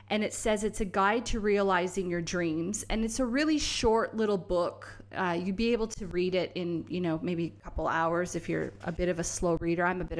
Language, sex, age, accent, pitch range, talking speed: English, female, 20-39, American, 175-210 Hz, 245 wpm